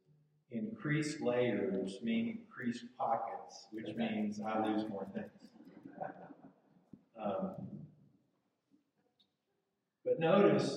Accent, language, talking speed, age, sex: American, English, 80 wpm, 50-69, male